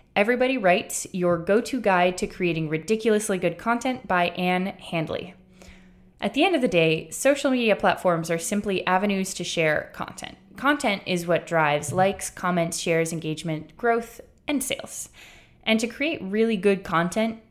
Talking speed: 155 wpm